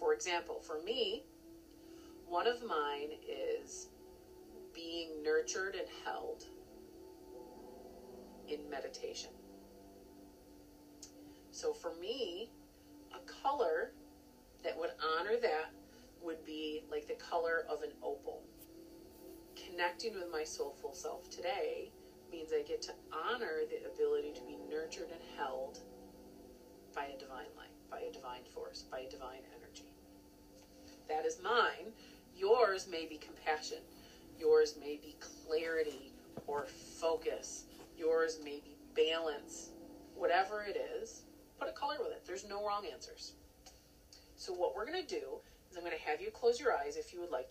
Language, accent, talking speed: English, American, 140 wpm